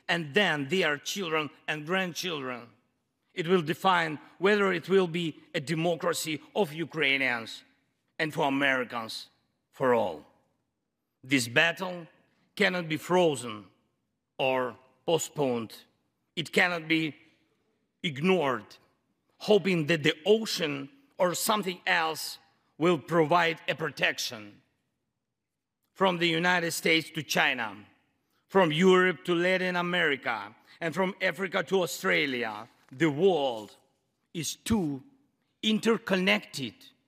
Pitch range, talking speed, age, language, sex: 140-180 Hz, 105 wpm, 50-69, English, male